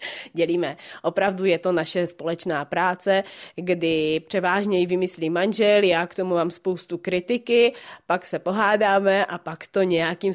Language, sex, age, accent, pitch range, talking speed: Czech, female, 30-49, native, 165-195 Hz, 140 wpm